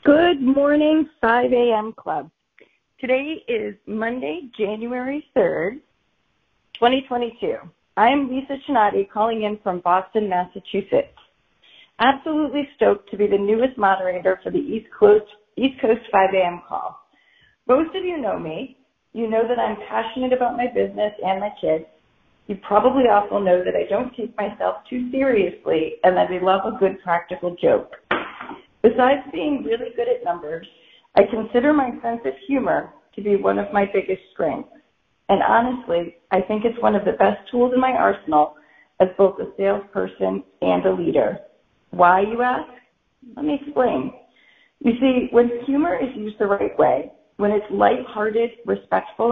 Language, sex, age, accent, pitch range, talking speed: English, female, 40-59, American, 200-265 Hz, 155 wpm